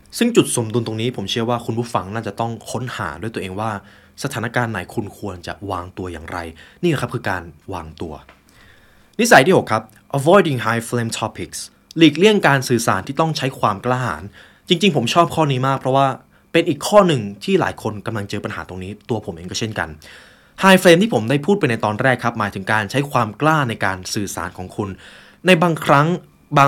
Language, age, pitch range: Thai, 20-39, 100-140 Hz